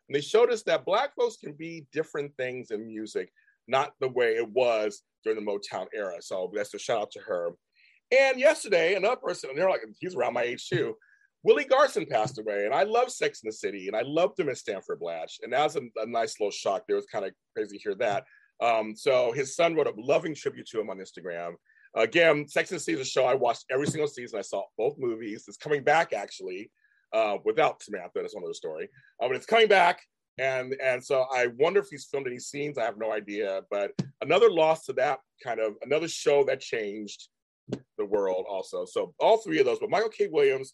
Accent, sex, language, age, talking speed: American, male, English, 30-49, 230 wpm